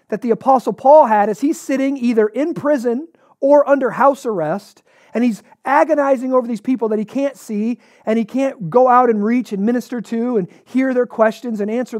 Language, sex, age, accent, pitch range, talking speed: English, male, 40-59, American, 210-265 Hz, 205 wpm